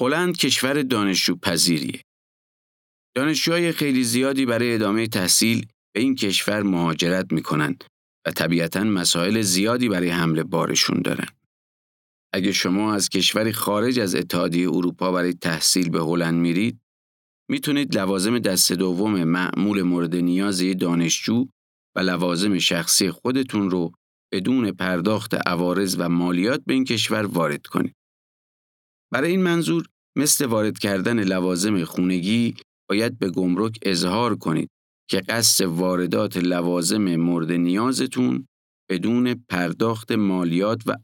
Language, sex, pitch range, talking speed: Persian, male, 85-110 Hz, 120 wpm